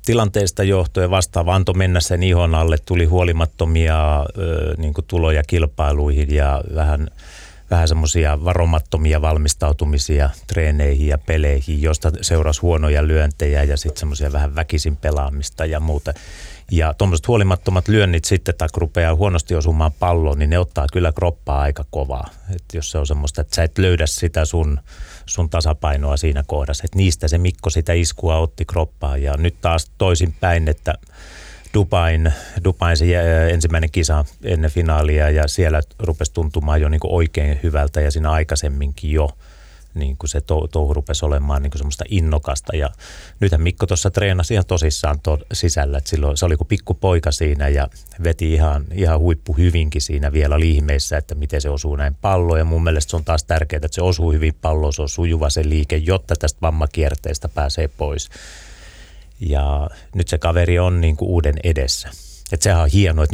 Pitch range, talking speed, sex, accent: 75-85 Hz, 165 wpm, male, native